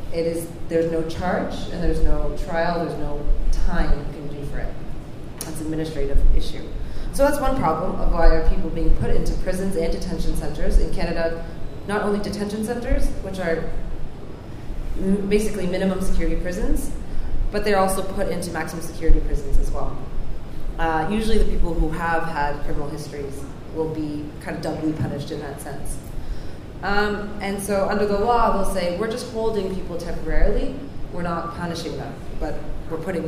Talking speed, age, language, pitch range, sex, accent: 175 wpm, 30-49, English, 160-195 Hz, female, American